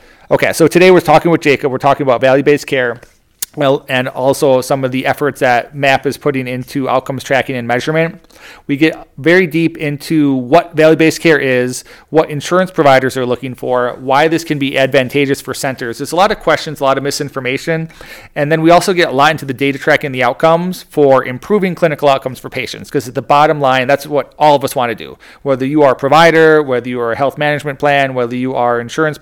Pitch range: 130-155 Hz